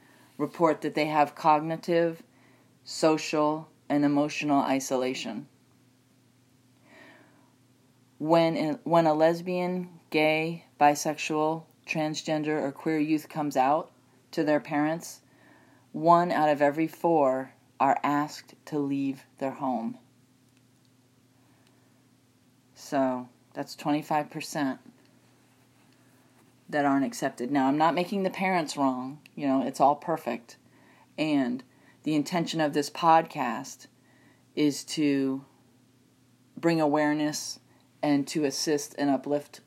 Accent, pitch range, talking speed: American, 130-160 Hz, 105 wpm